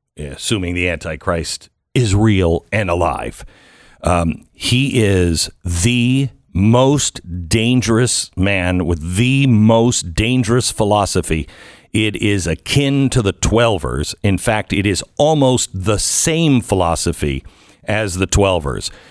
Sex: male